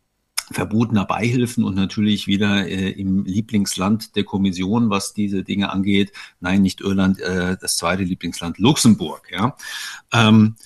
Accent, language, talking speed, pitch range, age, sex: German, German, 135 wpm, 100-120 Hz, 50-69, male